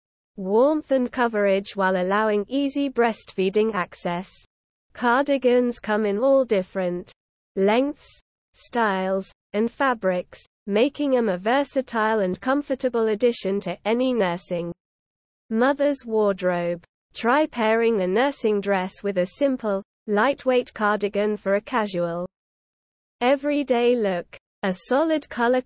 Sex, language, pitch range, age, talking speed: female, English, 190-250 Hz, 20-39, 110 wpm